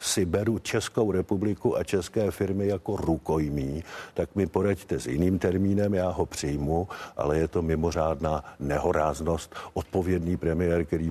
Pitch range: 75-95 Hz